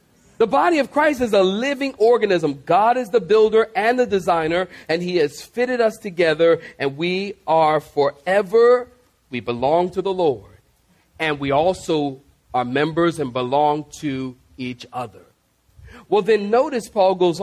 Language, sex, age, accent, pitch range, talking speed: English, male, 40-59, American, 145-200 Hz, 155 wpm